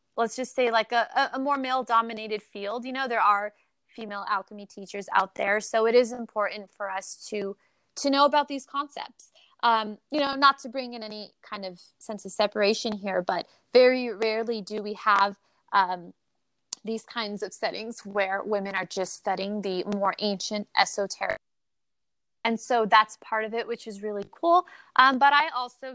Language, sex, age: English, female, 20-39